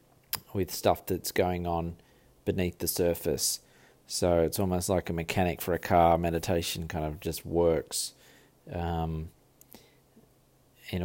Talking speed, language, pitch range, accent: 130 wpm, English, 80-95 Hz, Australian